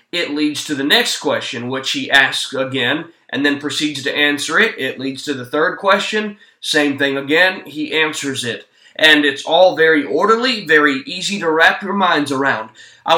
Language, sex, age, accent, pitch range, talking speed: English, male, 20-39, American, 145-215 Hz, 185 wpm